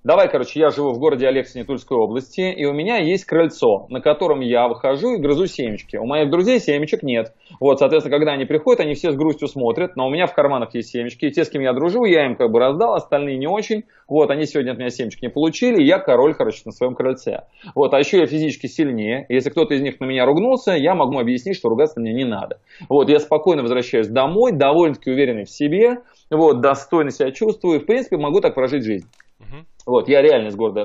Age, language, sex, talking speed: 30-49, Russian, male, 230 wpm